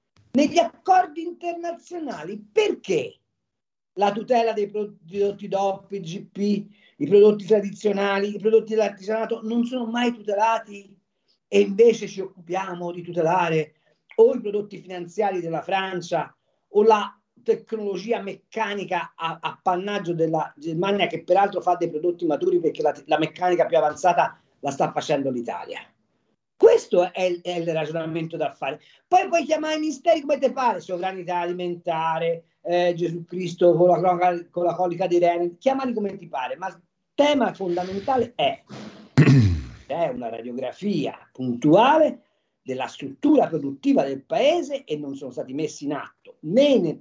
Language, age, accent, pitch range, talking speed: Italian, 40-59, native, 170-225 Hz, 145 wpm